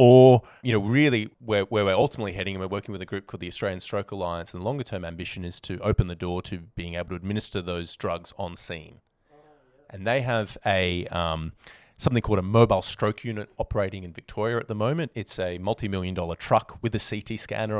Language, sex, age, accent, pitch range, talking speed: English, male, 30-49, Australian, 90-115 Hz, 215 wpm